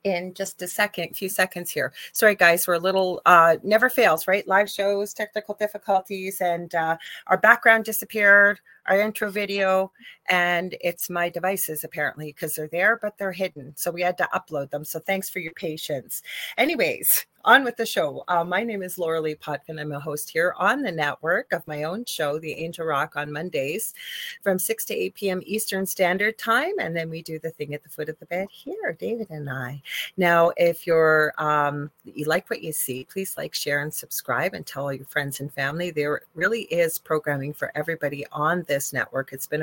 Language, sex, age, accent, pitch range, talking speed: English, female, 30-49, American, 155-205 Hz, 205 wpm